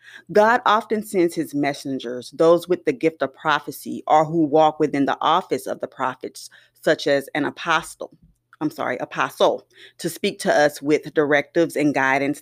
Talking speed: 170 wpm